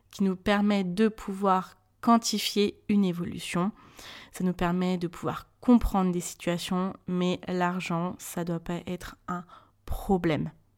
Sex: female